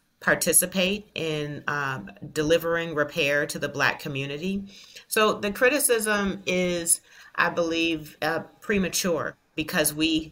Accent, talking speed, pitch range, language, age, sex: American, 110 wpm, 150-180 Hz, English, 40-59, female